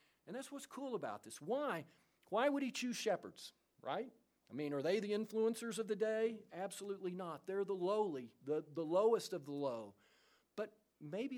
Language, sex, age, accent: English, male, 50-69, American